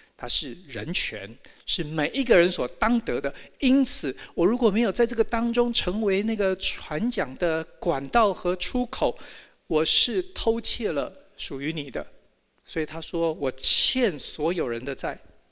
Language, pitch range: Chinese, 170-235 Hz